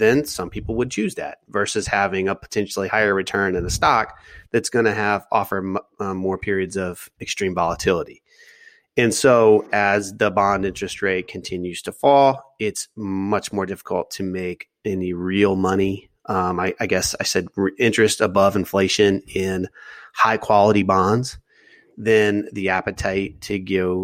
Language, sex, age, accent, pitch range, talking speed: English, male, 30-49, American, 95-105 Hz, 155 wpm